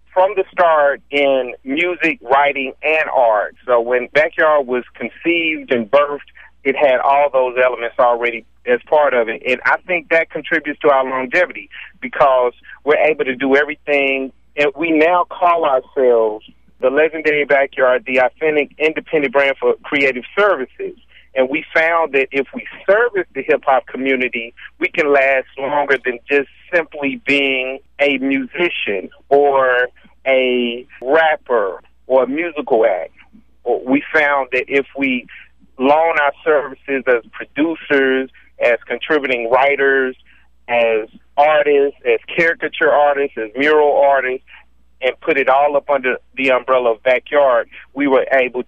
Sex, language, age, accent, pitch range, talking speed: male, English, 40-59, American, 125-155 Hz, 140 wpm